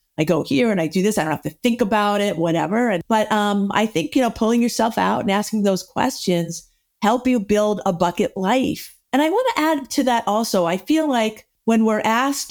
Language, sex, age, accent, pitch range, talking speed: English, female, 50-69, American, 170-225 Hz, 235 wpm